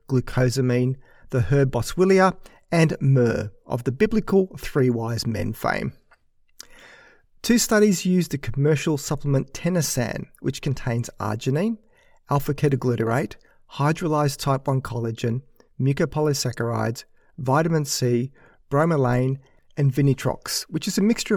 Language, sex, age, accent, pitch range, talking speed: English, male, 40-59, Australian, 125-160 Hz, 105 wpm